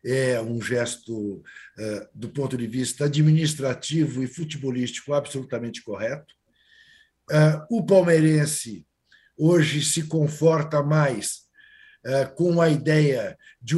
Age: 60-79